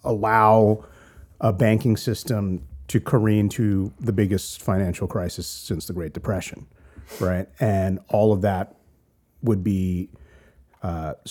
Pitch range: 95-120 Hz